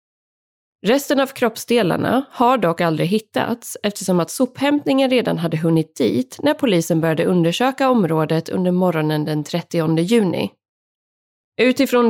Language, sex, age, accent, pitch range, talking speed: Swedish, female, 30-49, native, 170-255 Hz, 125 wpm